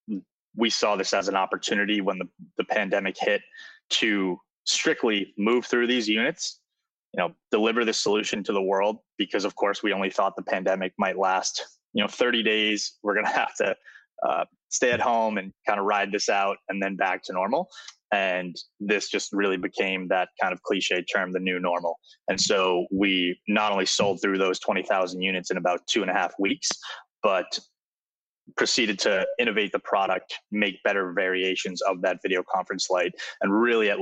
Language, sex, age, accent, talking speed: English, male, 20-39, American, 185 wpm